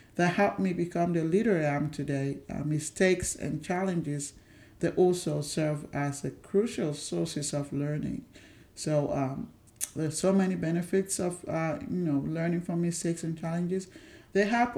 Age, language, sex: 50-69, English, male